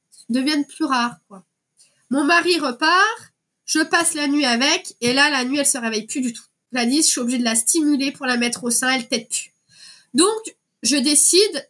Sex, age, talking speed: female, 20-39, 210 wpm